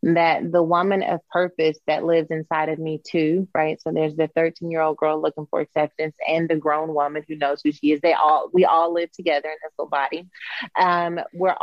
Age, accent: 30-49, American